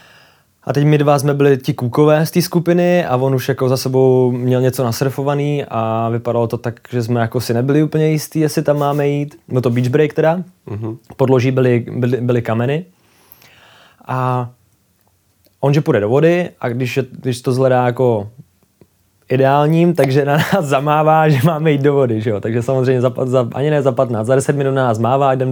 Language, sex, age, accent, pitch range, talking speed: Czech, male, 20-39, native, 120-145 Hz, 200 wpm